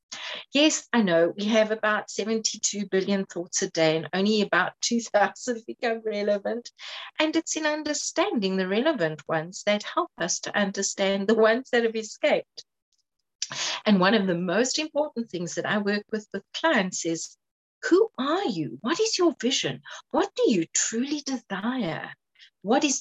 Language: English